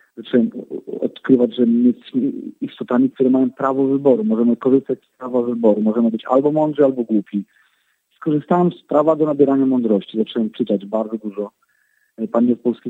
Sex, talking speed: male, 150 wpm